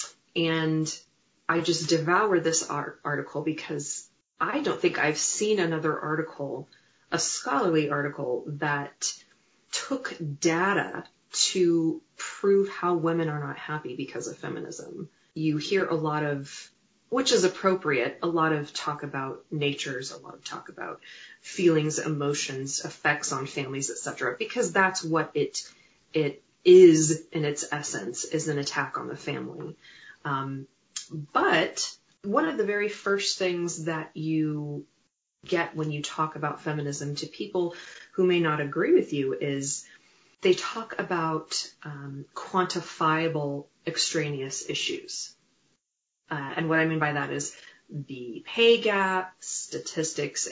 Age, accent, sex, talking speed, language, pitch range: 30-49, American, female, 135 wpm, English, 150-185 Hz